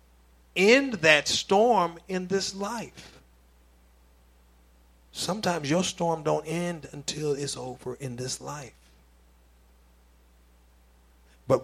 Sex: male